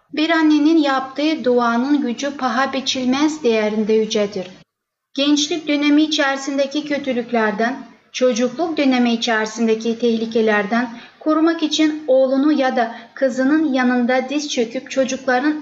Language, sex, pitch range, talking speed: Turkish, female, 230-285 Hz, 105 wpm